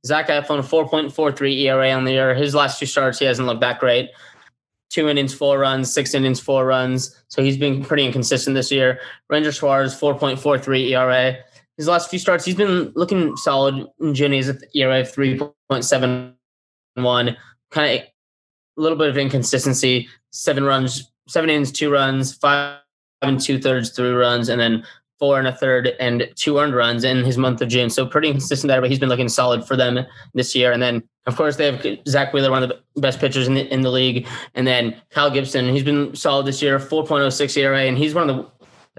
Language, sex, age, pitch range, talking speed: English, male, 20-39, 125-145 Hz, 195 wpm